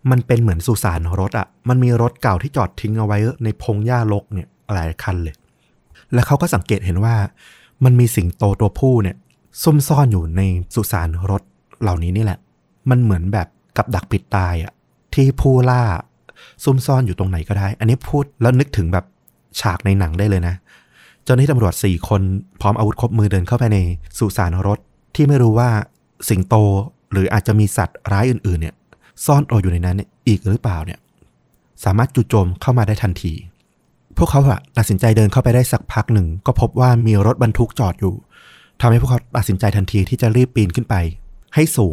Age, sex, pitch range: 20-39, male, 95-120 Hz